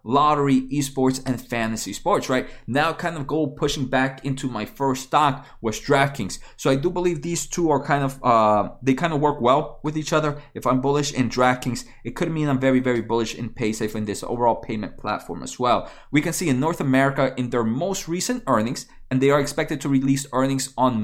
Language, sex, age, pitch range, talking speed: English, male, 20-39, 120-150 Hz, 220 wpm